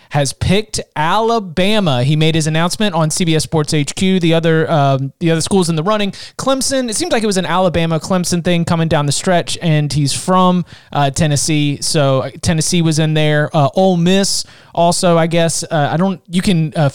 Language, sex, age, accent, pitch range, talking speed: English, male, 30-49, American, 150-190 Hz, 200 wpm